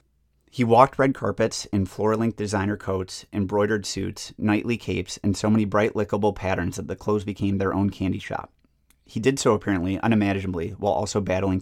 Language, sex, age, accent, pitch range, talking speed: English, male, 30-49, American, 95-105 Hz, 175 wpm